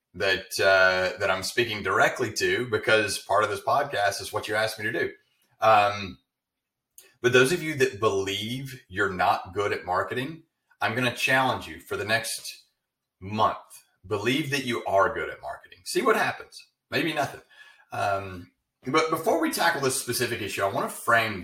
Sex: male